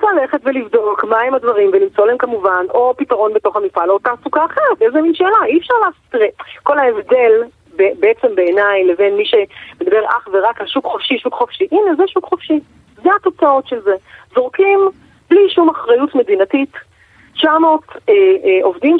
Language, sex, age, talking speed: Hebrew, female, 30-49, 160 wpm